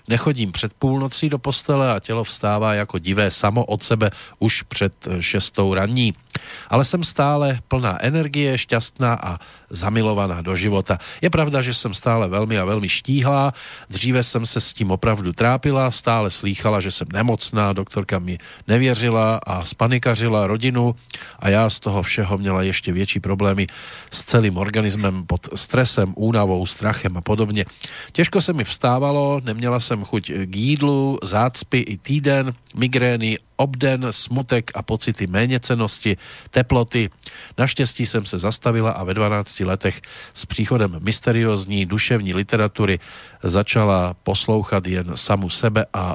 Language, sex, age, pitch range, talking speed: Slovak, male, 40-59, 100-125 Hz, 145 wpm